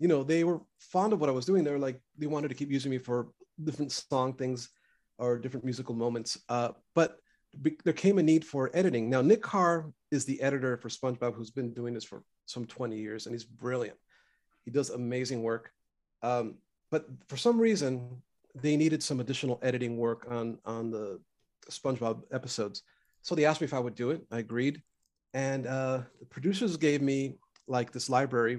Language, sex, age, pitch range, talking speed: English, male, 40-59, 125-165 Hz, 200 wpm